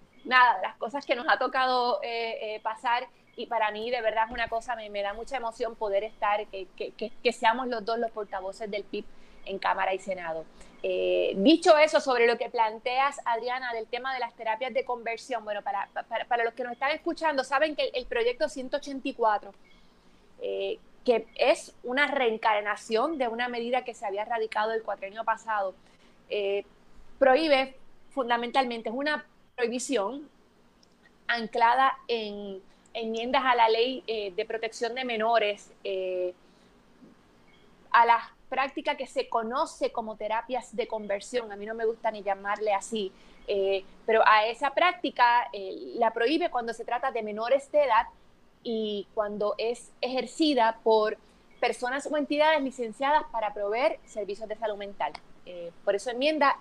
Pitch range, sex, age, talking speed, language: 210-260 Hz, female, 20-39, 165 wpm, Spanish